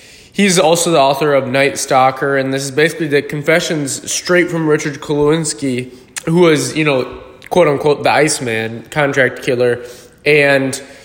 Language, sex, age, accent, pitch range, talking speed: English, male, 20-39, American, 130-155 Hz, 145 wpm